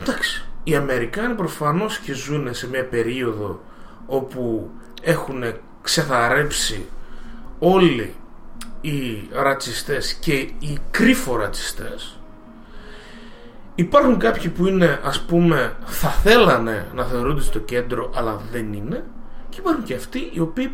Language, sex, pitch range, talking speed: Greek, male, 120-190 Hz, 115 wpm